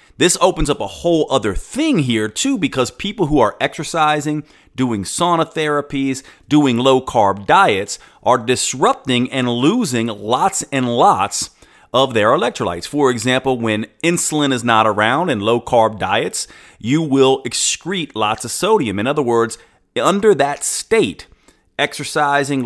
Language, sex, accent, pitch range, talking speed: English, male, American, 115-150 Hz, 145 wpm